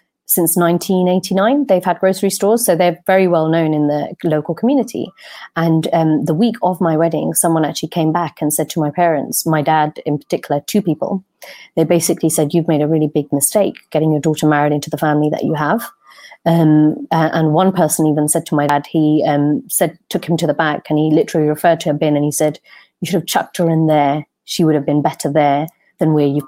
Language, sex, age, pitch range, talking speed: Punjabi, female, 30-49, 155-180 Hz, 225 wpm